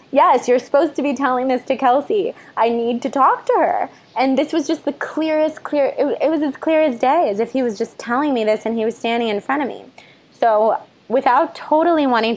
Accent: American